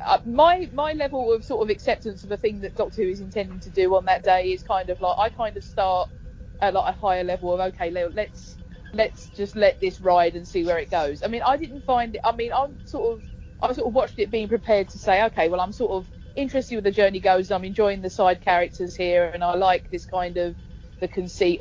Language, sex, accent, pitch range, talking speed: English, female, British, 165-195 Hz, 255 wpm